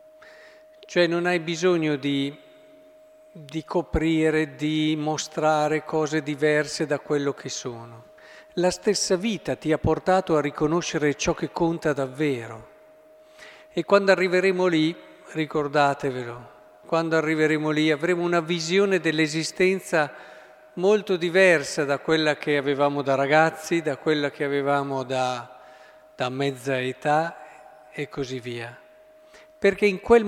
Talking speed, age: 120 wpm, 50-69